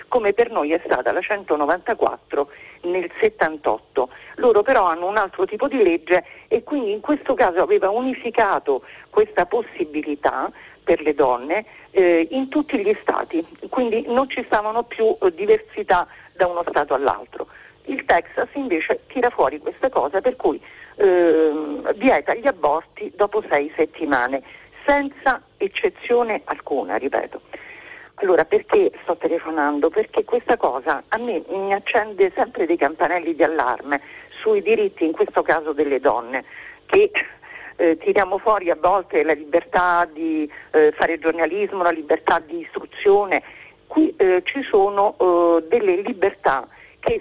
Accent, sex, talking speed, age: native, female, 140 wpm, 50-69